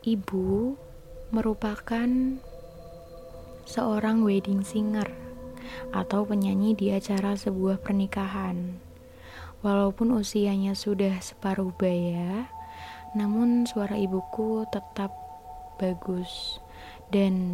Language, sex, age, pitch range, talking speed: Indonesian, female, 20-39, 175-205 Hz, 75 wpm